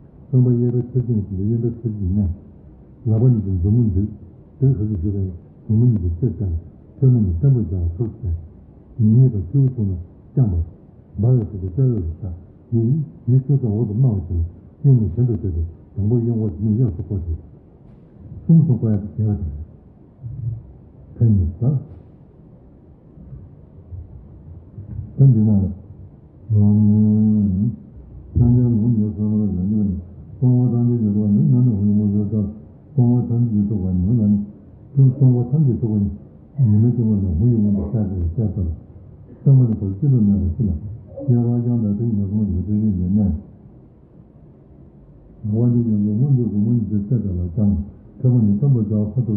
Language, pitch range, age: Italian, 95-120 Hz, 60-79